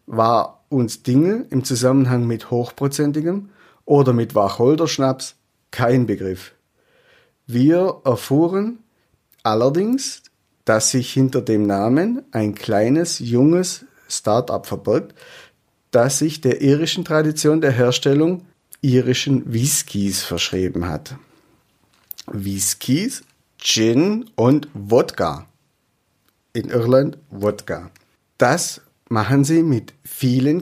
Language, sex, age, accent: German, male, 50-69, German